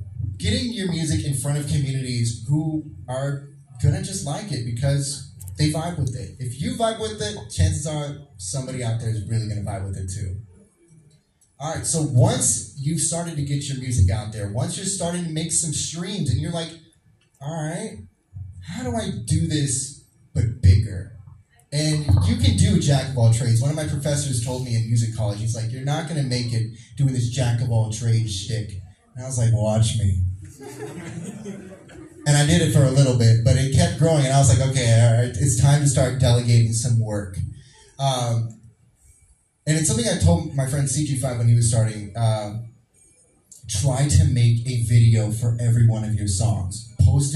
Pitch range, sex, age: 110-140 Hz, male, 30-49